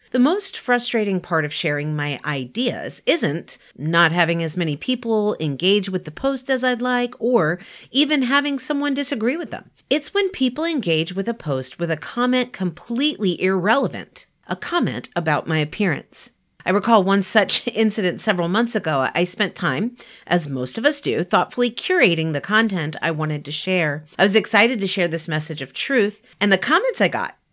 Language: English